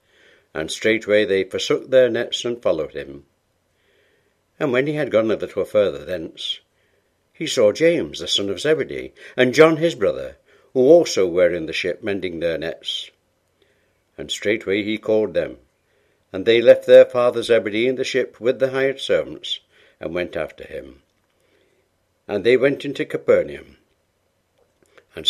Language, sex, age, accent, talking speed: English, male, 60-79, British, 155 wpm